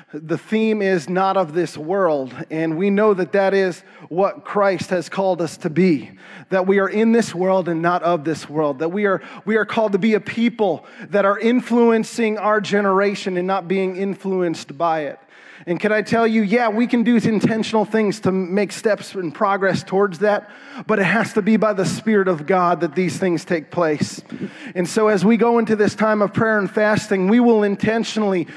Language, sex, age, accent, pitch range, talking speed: English, male, 30-49, American, 190-225 Hz, 210 wpm